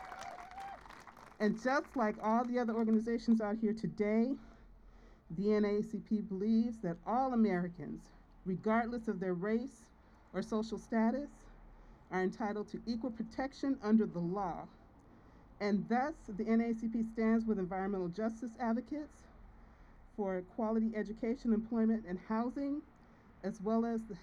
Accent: American